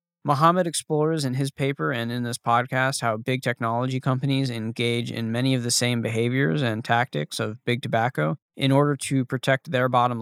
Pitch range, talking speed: 120-135 Hz, 180 wpm